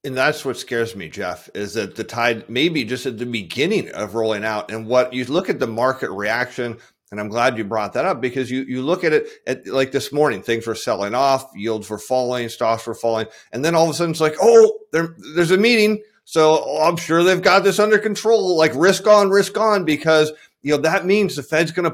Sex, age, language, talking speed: male, 40-59, English, 245 wpm